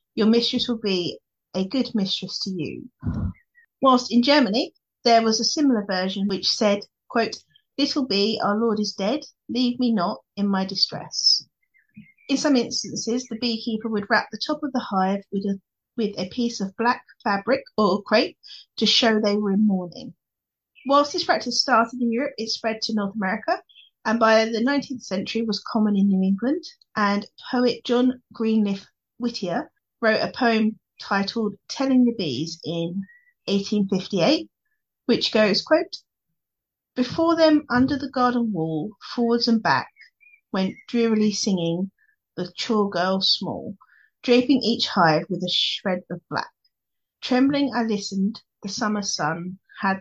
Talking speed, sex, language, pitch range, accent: 155 wpm, female, English, 195-250 Hz, British